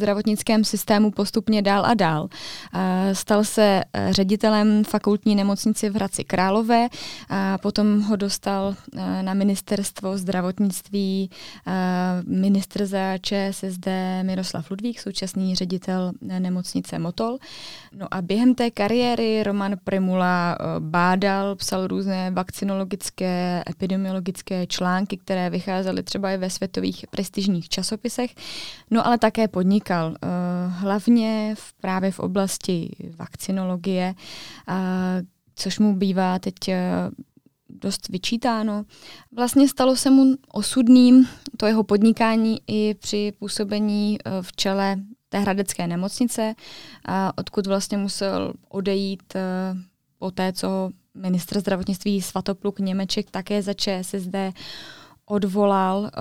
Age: 20-39